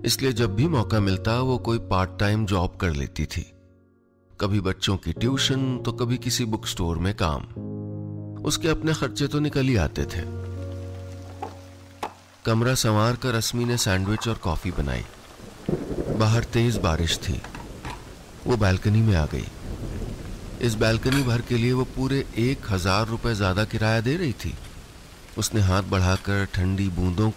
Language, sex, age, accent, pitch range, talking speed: English, male, 40-59, Indian, 95-120 Hz, 150 wpm